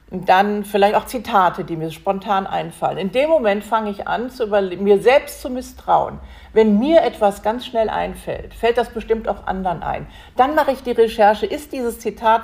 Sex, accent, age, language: female, German, 50-69, German